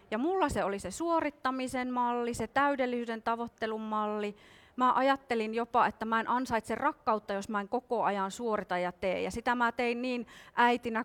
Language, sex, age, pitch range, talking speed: Finnish, female, 30-49, 210-265 Hz, 180 wpm